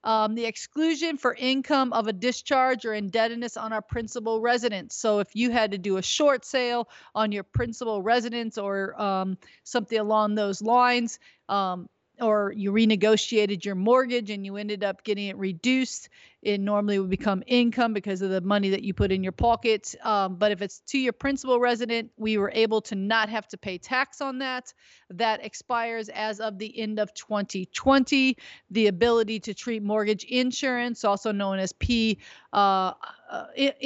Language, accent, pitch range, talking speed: English, American, 210-245 Hz, 175 wpm